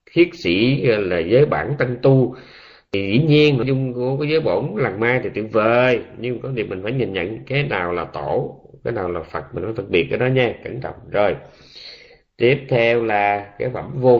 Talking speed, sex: 205 wpm, male